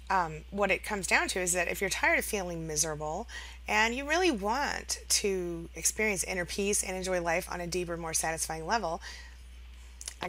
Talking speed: 185 wpm